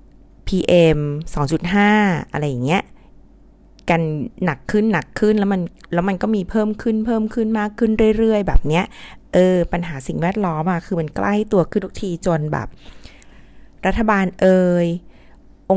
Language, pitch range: Thai, 155-205 Hz